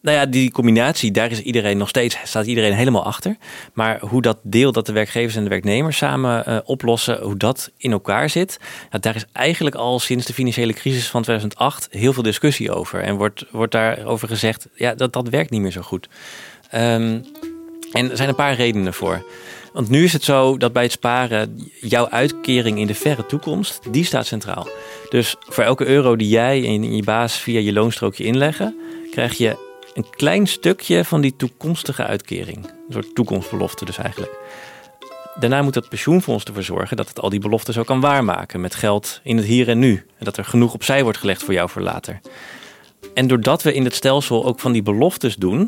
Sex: male